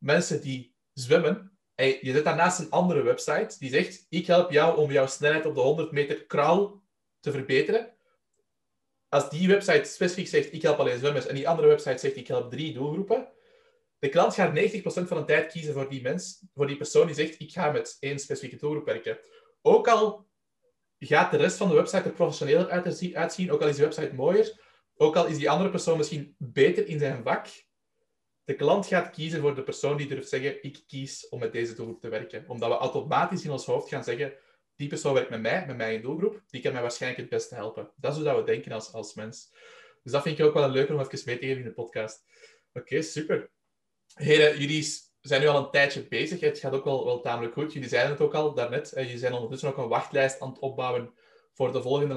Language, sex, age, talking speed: Dutch, male, 30-49, 225 wpm